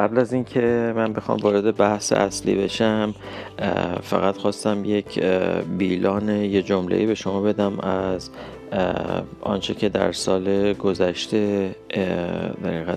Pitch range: 90-105 Hz